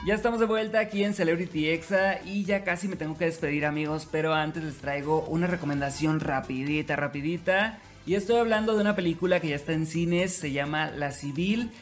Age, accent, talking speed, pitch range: 30-49, Mexican, 200 wpm, 145-180 Hz